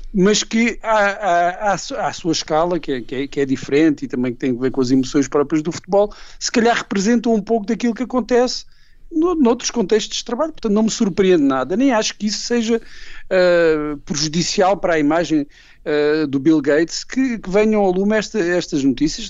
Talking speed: 175 wpm